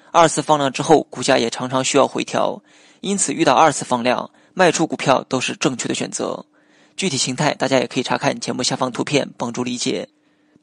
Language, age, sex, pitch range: Chinese, 20-39, male, 130-160 Hz